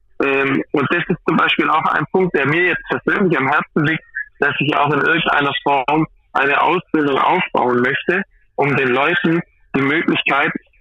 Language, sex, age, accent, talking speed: German, male, 20-39, German, 165 wpm